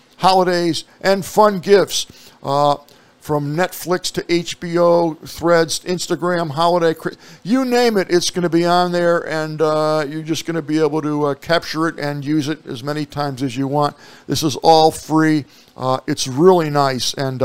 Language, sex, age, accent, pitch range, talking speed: English, male, 60-79, American, 140-170 Hz, 175 wpm